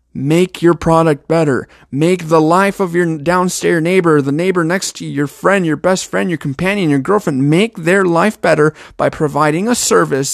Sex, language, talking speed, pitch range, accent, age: male, English, 190 wpm, 145-195 Hz, American, 30-49